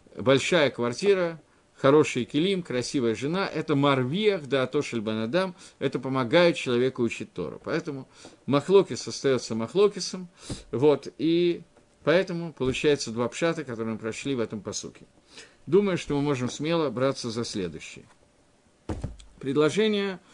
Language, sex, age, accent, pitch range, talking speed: Russian, male, 50-69, native, 125-180 Hz, 120 wpm